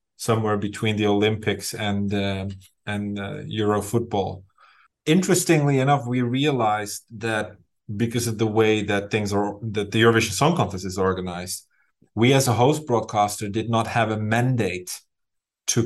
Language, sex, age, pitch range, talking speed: English, male, 30-49, 95-110 Hz, 150 wpm